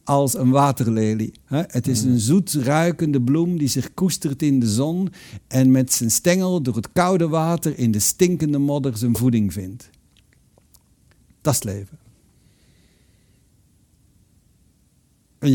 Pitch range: 120-165 Hz